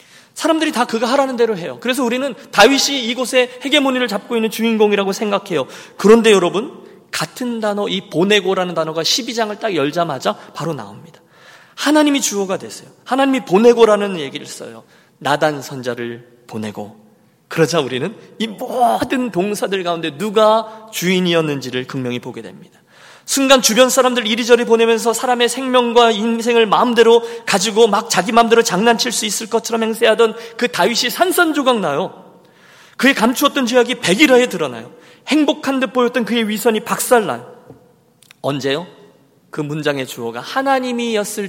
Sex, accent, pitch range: male, native, 170-245 Hz